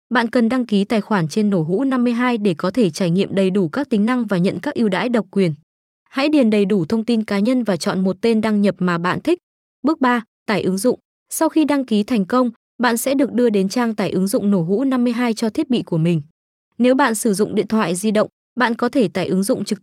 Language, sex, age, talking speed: Vietnamese, female, 20-39, 265 wpm